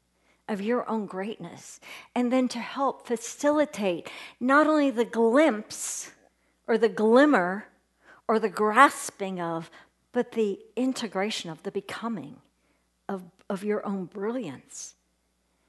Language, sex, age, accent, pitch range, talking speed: English, female, 50-69, American, 190-280 Hz, 120 wpm